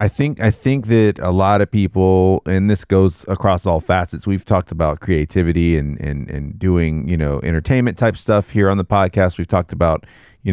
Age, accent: 30-49, American